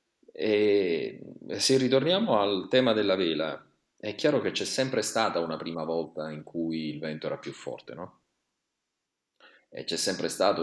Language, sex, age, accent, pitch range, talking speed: Italian, male, 30-49, native, 75-85 Hz, 150 wpm